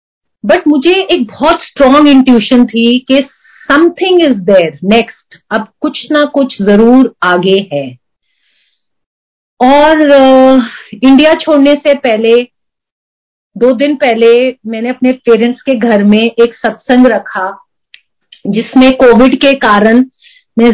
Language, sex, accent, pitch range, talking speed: Hindi, female, native, 215-265 Hz, 120 wpm